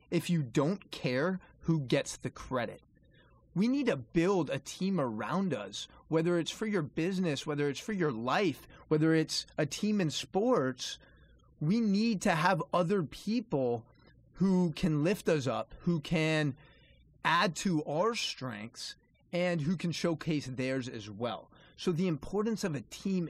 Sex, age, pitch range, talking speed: male, 30-49, 140-185 Hz, 160 wpm